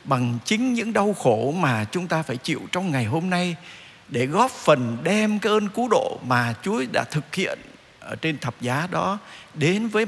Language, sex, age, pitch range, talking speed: Vietnamese, male, 50-69, 125-200 Hz, 200 wpm